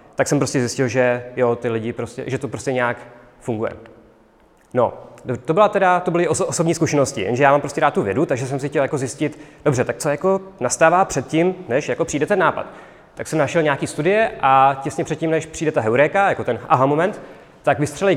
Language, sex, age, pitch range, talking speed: Czech, male, 30-49, 130-160 Hz, 220 wpm